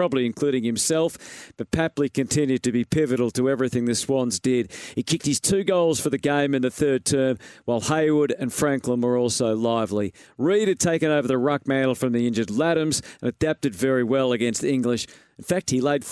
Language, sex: English, male